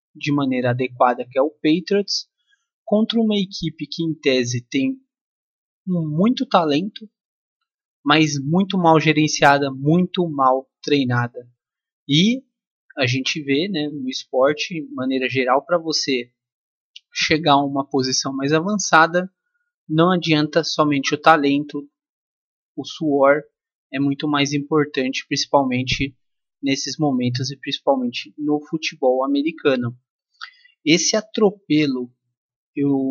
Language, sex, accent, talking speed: Portuguese, male, Brazilian, 115 wpm